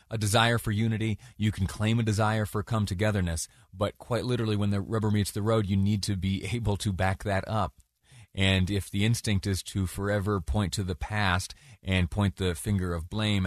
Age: 30-49